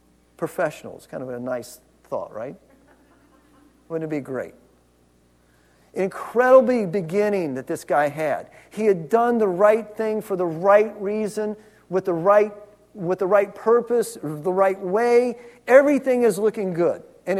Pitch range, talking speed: 150-220 Hz, 145 wpm